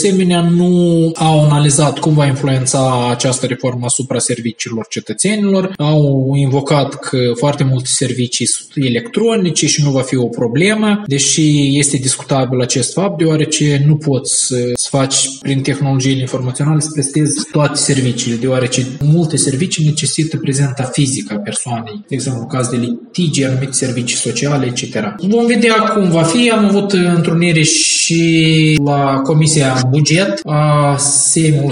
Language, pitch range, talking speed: Romanian, 135-175 Hz, 140 wpm